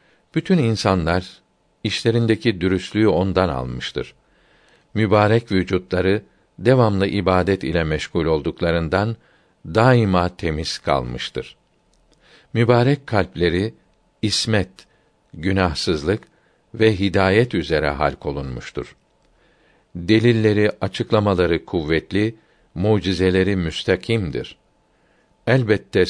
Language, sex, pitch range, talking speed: Turkish, male, 90-115 Hz, 70 wpm